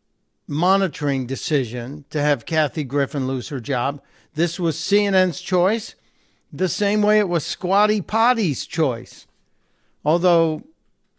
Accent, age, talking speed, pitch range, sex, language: American, 60-79, 120 wpm, 140-180 Hz, male, English